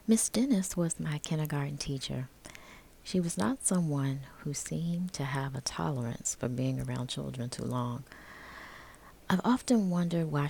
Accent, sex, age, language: American, female, 30-49, English